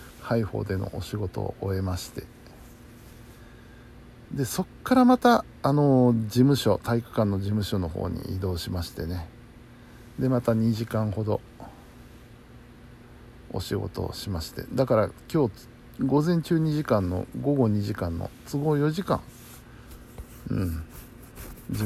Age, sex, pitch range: 60-79, male, 95-120 Hz